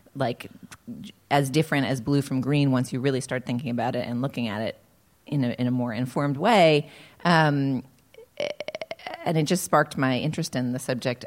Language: English